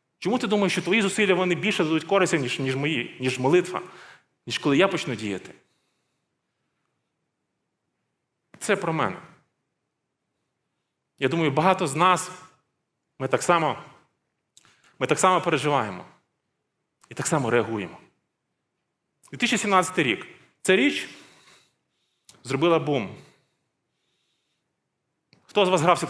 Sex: male